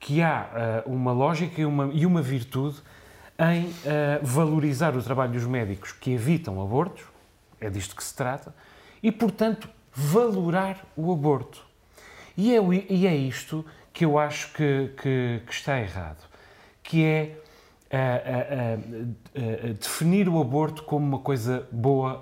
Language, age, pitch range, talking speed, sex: Portuguese, 30-49, 120-160 Hz, 125 wpm, male